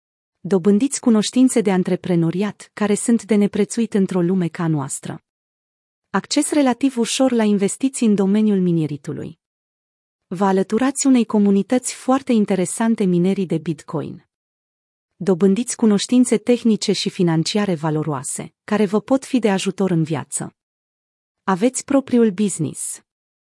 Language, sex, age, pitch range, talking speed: Romanian, female, 30-49, 180-230 Hz, 120 wpm